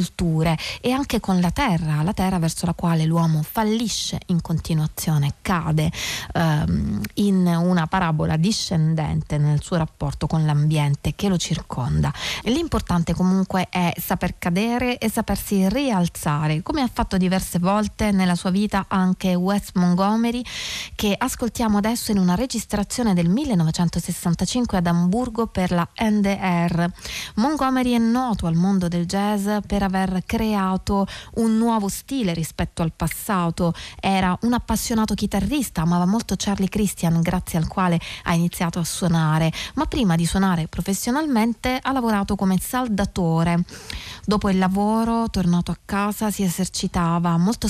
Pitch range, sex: 170-210 Hz, female